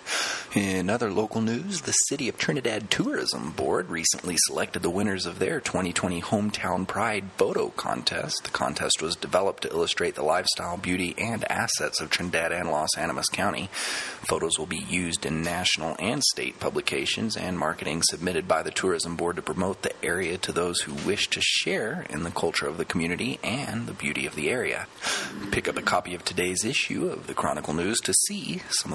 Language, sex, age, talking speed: English, male, 30-49, 185 wpm